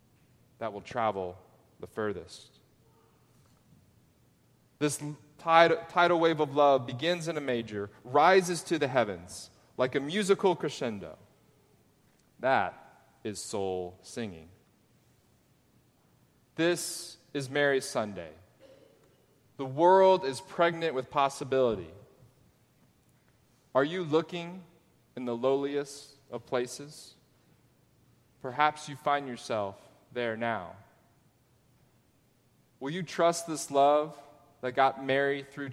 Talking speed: 100 wpm